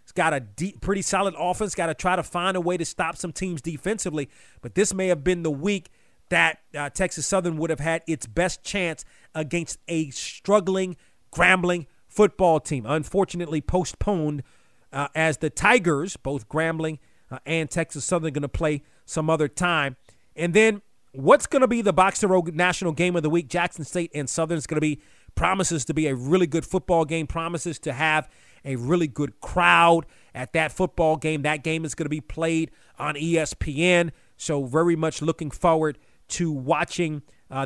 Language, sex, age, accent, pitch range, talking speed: English, male, 30-49, American, 145-180 Hz, 190 wpm